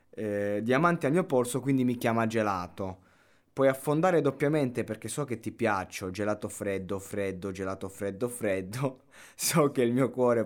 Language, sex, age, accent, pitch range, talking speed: Italian, male, 20-39, native, 100-130 Hz, 160 wpm